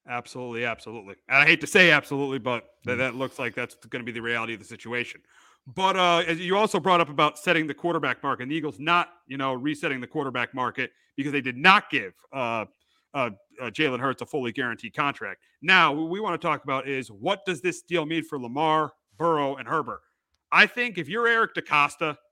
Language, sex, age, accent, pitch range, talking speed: English, male, 40-59, American, 145-190 Hz, 220 wpm